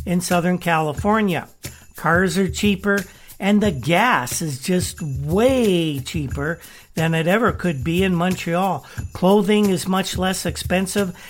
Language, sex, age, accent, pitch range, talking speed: English, male, 60-79, American, 160-200 Hz, 135 wpm